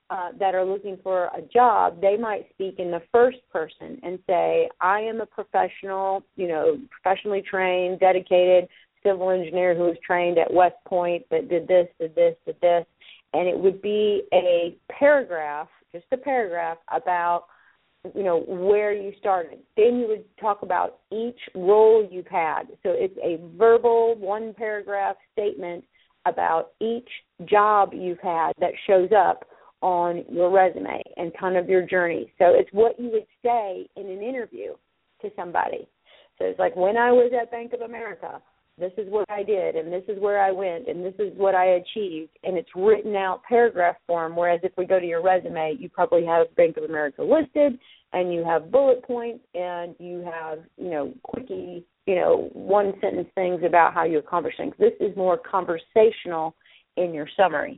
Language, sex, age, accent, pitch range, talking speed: English, female, 40-59, American, 175-225 Hz, 180 wpm